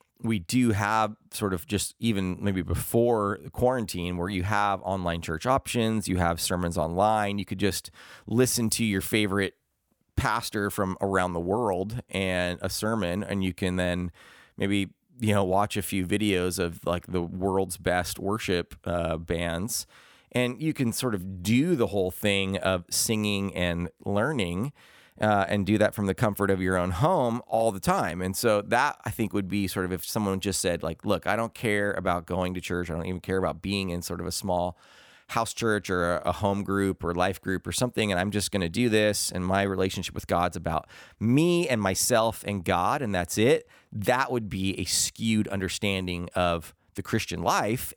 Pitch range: 90-105 Hz